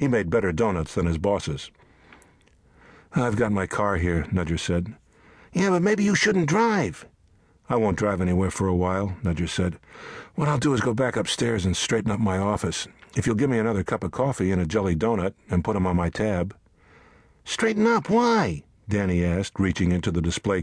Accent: American